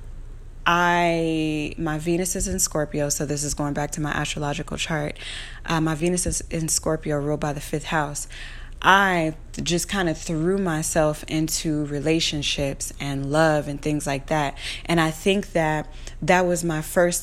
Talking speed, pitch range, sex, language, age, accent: 165 wpm, 150-170 Hz, female, English, 20-39, American